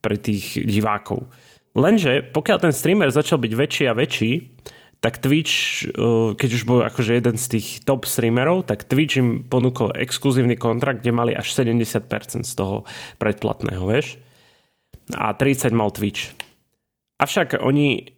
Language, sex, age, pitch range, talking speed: Slovak, male, 30-49, 115-140 Hz, 140 wpm